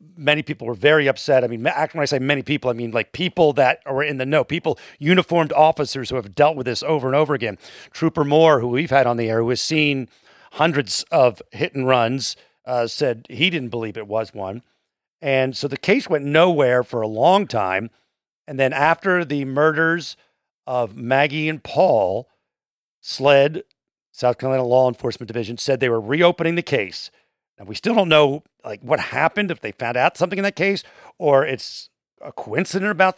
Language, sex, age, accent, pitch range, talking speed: English, male, 40-59, American, 120-155 Hz, 195 wpm